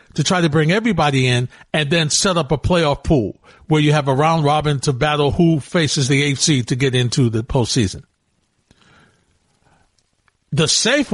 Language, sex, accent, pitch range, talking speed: English, male, American, 140-180 Hz, 170 wpm